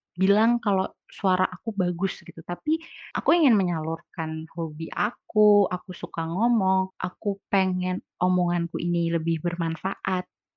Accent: native